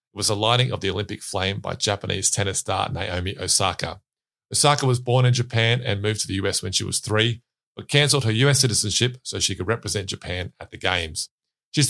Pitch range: 100-125 Hz